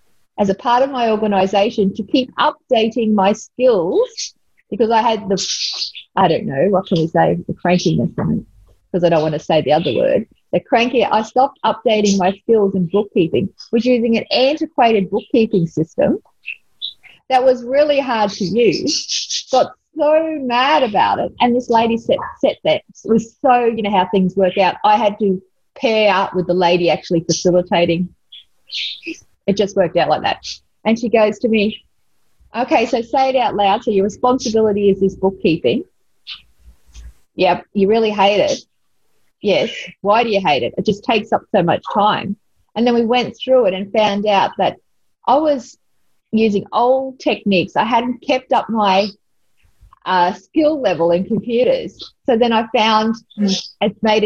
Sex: female